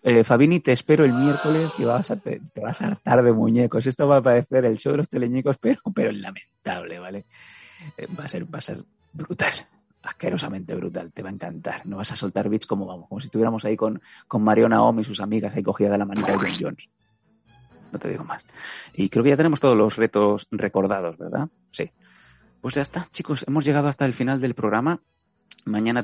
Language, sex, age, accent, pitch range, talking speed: Spanish, male, 30-49, Spanish, 100-125 Hz, 215 wpm